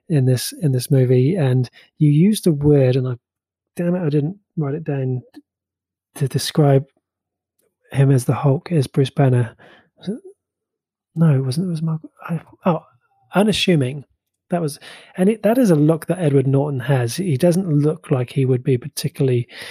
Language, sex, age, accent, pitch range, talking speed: English, male, 30-49, British, 130-160 Hz, 165 wpm